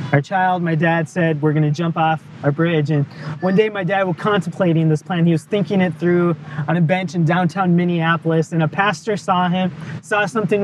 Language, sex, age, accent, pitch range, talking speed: English, male, 20-39, American, 165-200 Hz, 220 wpm